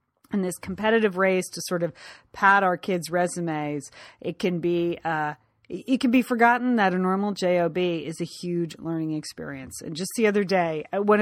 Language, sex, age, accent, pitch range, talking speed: English, female, 40-59, American, 175-230 Hz, 170 wpm